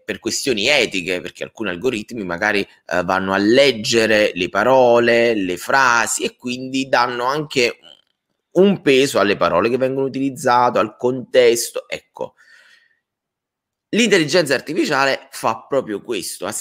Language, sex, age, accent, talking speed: Italian, male, 20-39, native, 125 wpm